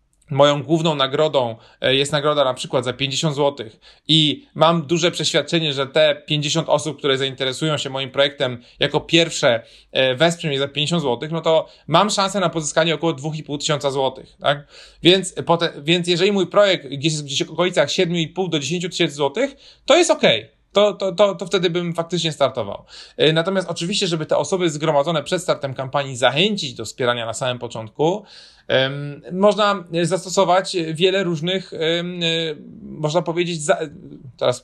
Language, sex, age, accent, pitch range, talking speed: Polish, male, 30-49, native, 145-185 Hz, 150 wpm